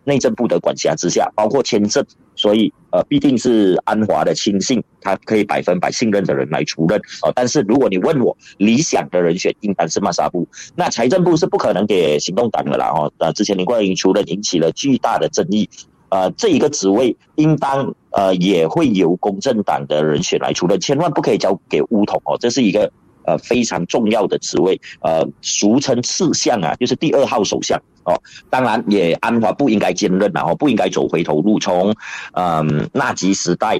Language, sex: Chinese, male